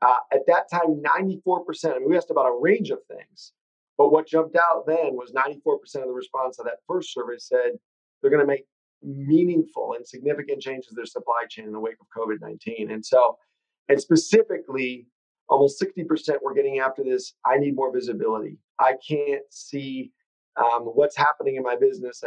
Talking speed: 185 wpm